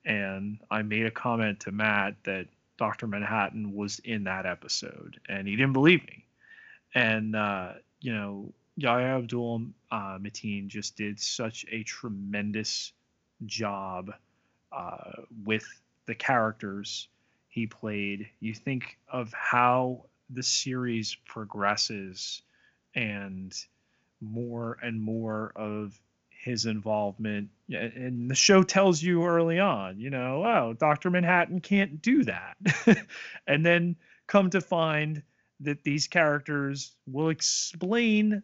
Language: English